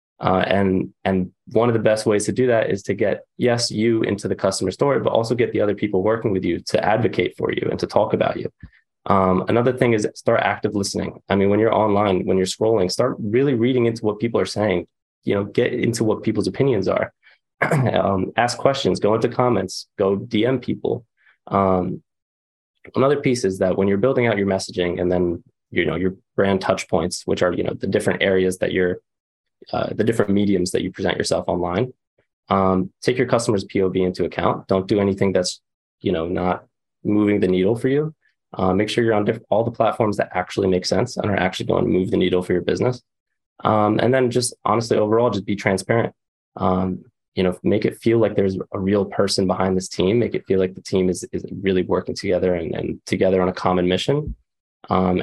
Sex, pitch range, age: male, 95-110 Hz, 20-39